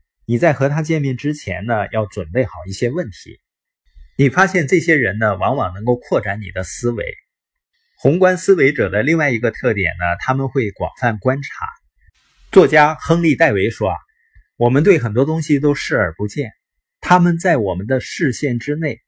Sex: male